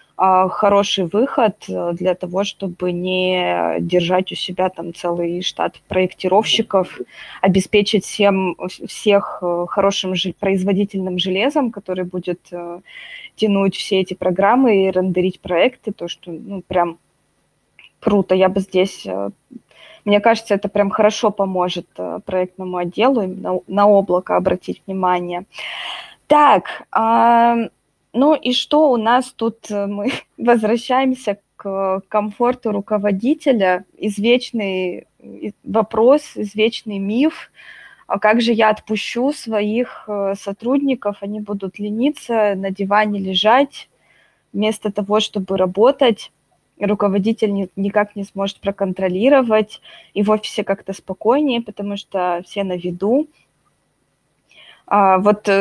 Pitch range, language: 185-225 Hz, Russian